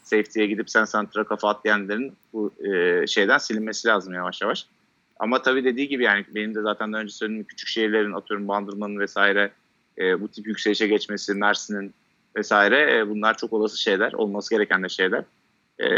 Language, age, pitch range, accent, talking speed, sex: Turkish, 30-49, 100-115 Hz, native, 175 wpm, male